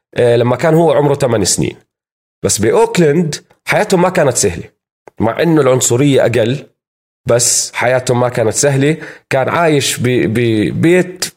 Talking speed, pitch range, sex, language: 125 wpm, 120-170 Hz, male, Arabic